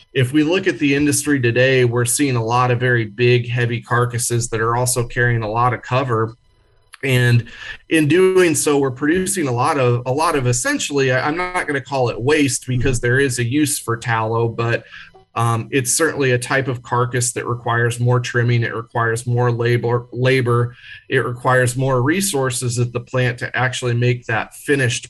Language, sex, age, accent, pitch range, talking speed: English, male, 30-49, American, 115-130 Hz, 190 wpm